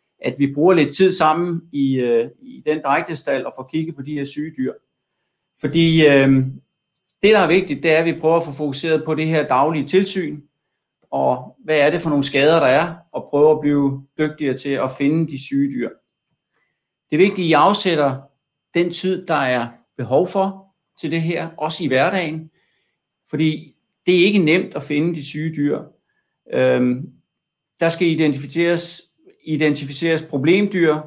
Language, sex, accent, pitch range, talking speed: Danish, male, native, 140-170 Hz, 175 wpm